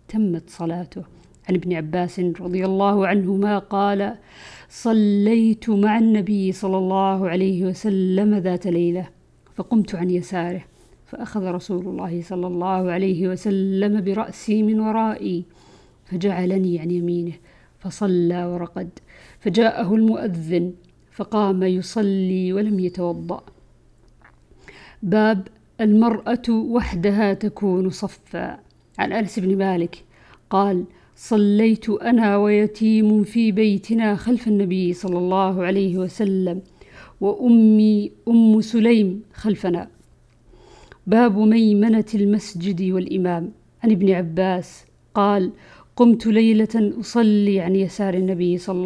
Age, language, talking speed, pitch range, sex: 50-69, Arabic, 100 wpm, 180-215 Hz, female